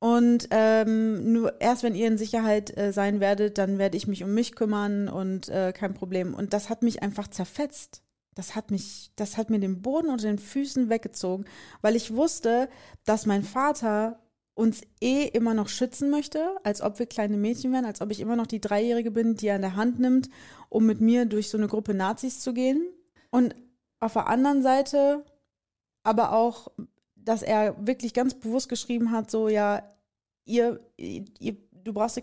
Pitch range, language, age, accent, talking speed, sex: 205-240 Hz, German, 30-49, German, 195 wpm, female